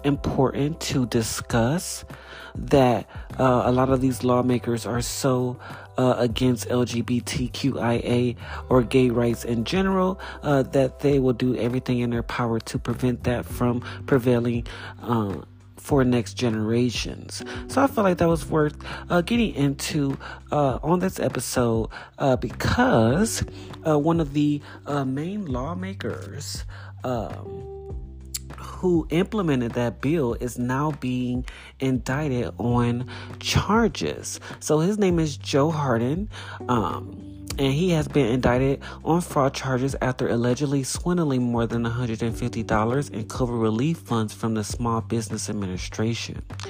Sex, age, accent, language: male, 40-59, American, English